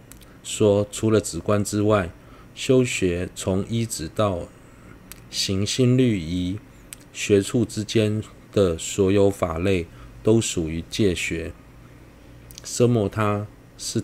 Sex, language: male, Chinese